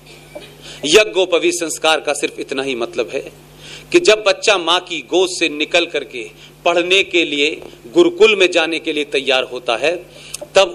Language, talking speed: Hindi, 160 wpm